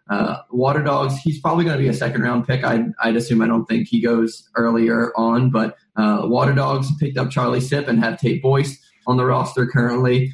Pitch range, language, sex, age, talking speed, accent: 110-125 Hz, English, male, 20-39, 210 wpm, American